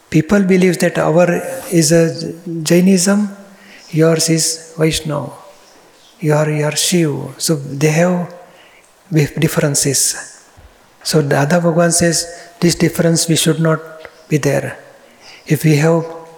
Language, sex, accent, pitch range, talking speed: Gujarati, male, native, 155-170 Hz, 115 wpm